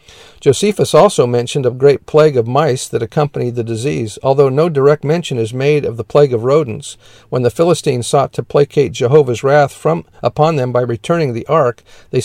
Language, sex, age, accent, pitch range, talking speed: English, male, 50-69, American, 120-150 Hz, 190 wpm